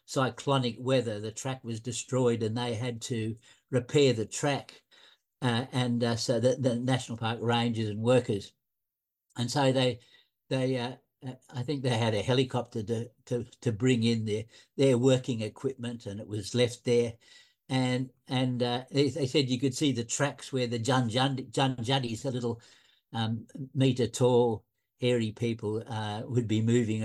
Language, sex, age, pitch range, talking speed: English, male, 60-79, 115-135 Hz, 170 wpm